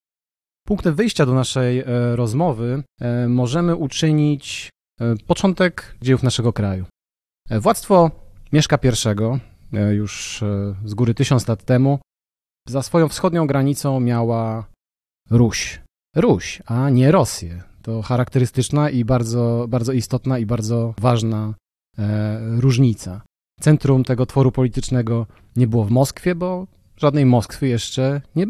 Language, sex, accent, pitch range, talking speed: Polish, male, native, 110-140 Hz, 110 wpm